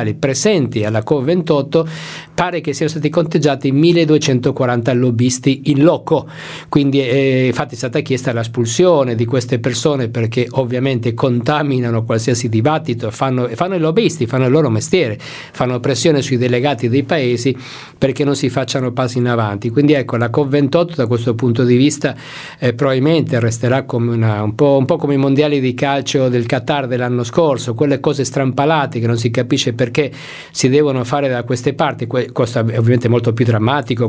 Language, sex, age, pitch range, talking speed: Italian, male, 50-69, 120-150 Hz, 170 wpm